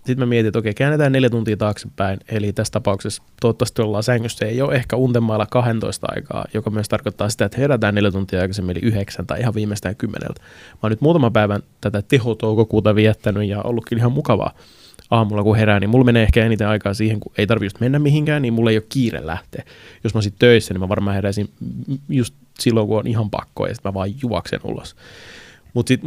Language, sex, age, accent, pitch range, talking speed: Finnish, male, 20-39, native, 100-120 Hz, 205 wpm